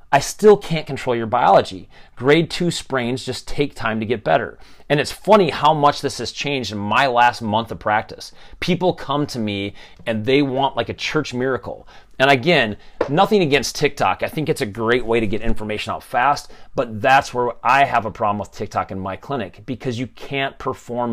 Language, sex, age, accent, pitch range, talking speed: English, male, 30-49, American, 110-150 Hz, 205 wpm